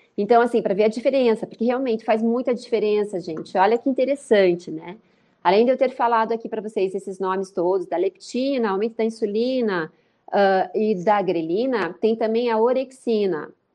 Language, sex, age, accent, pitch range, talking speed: Portuguese, female, 30-49, Brazilian, 195-245 Hz, 175 wpm